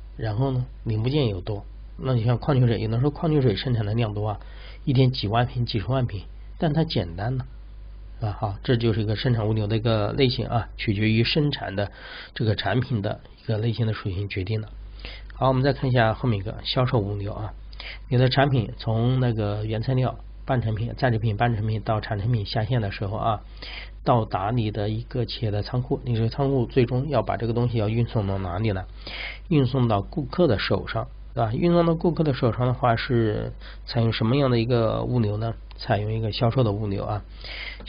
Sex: male